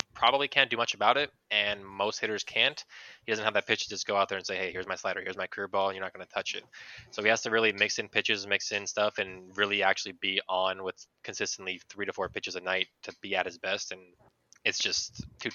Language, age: English, 20-39